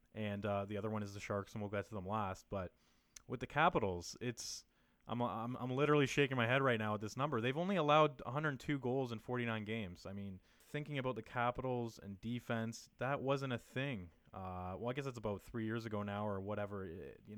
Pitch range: 100-125 Hz